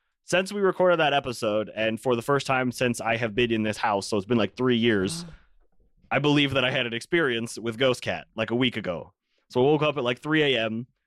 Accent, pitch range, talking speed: American, 95-125 Hz, 245 wpm